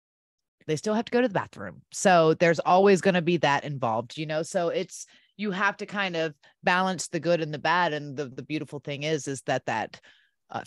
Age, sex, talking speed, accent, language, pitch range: 30-49, female, 230 wpm, American, English, 140-170 Hz